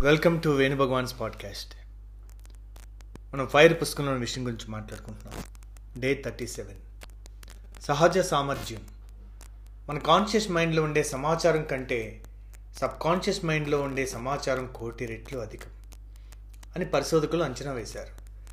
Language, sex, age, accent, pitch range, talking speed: Telugu, male, 30-49, native, 105-160 Hz, 105 wpm